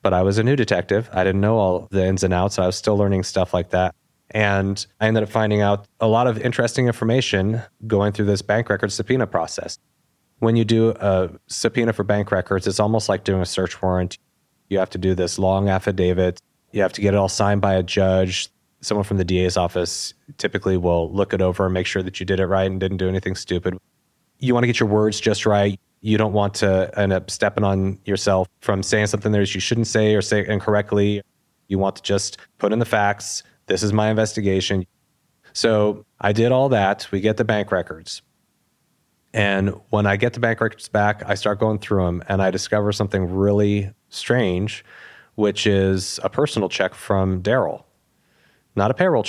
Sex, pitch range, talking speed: male, 95-105 Hz, 210 wpm